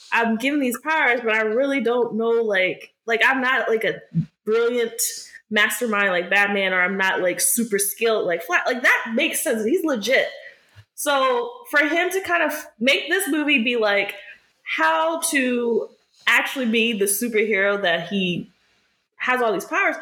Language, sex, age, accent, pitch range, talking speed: English, female, 20-39, American, 210-335 Hz, 170 wpm